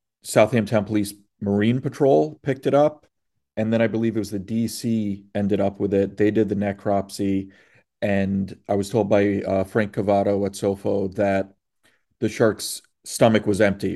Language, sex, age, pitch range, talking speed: English, male, 40-59, 100-110 Hz, 170 wpm